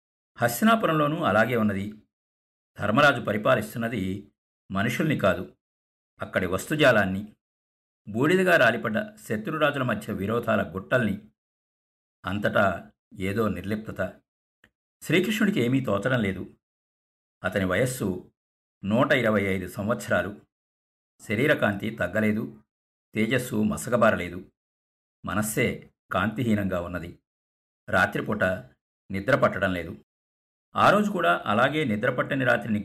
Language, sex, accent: Telugu, male, native